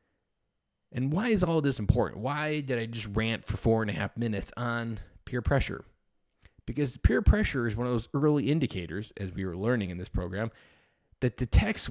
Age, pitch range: 20-39, 100-130 Hz